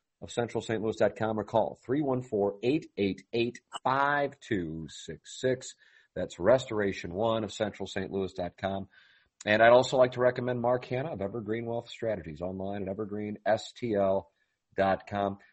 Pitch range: 95-125 Hz